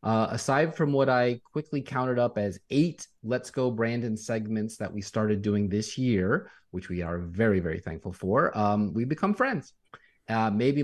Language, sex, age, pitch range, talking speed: English, male, 30-49, 100-130 Hz, 185 wpm